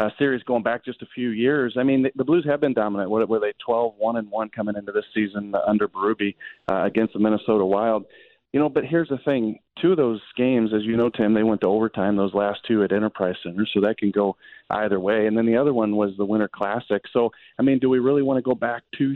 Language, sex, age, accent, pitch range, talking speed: English, male, 40-59, American, 105-125 Hz, 255 wpm